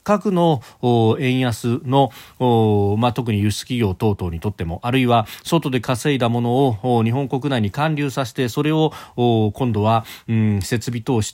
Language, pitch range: Japanese, 95-135 Hz